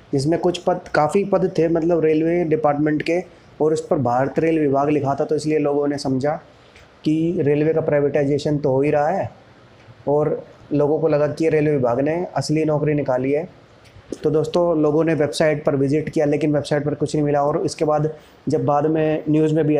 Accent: native